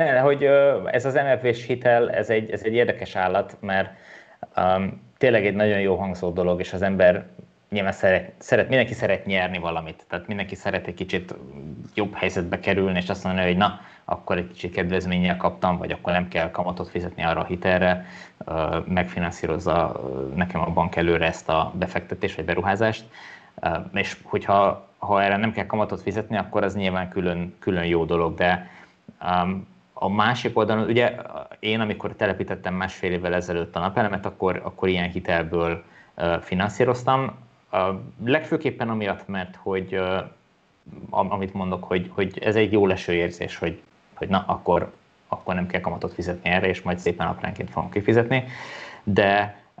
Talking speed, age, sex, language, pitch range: 160 wpm, 20-39, male, Hungarian, 90-105 Hz